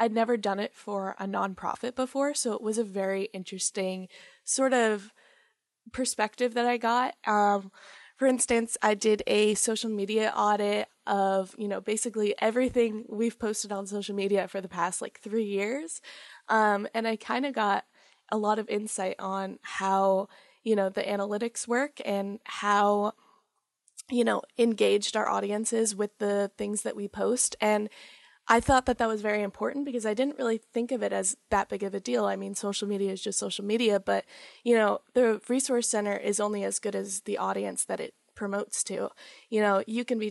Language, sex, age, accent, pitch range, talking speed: English, female, 20-39, American, 200-230 Hz, 190 wpm